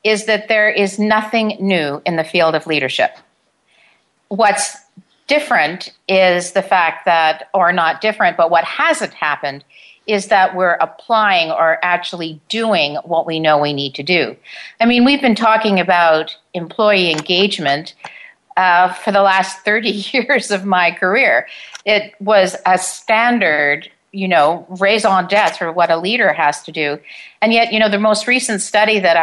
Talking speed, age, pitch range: 165 wpm, 50-69, 170-220 Hz